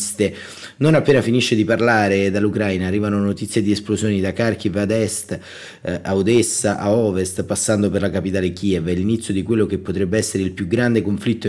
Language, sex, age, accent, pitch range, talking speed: Italian, male, 30-49, native, 95-115 Hz, 180 wpm